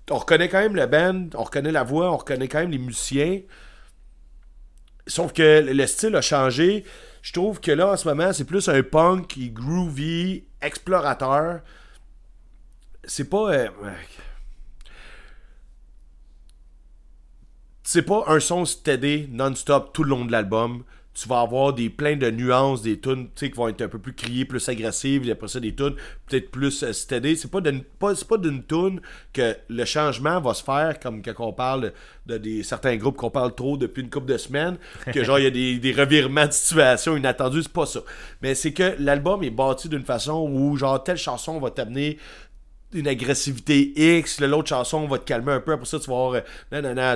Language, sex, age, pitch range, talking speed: French, male, 40-59, 125-155 Hz, 190 wpm